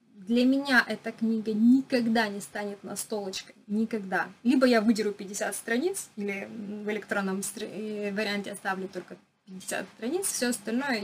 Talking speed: 140 wpm